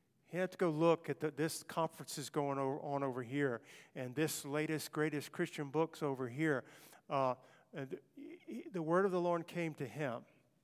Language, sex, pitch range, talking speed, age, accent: English, male, 140-160 Hz, 170 wpm, 50-69, American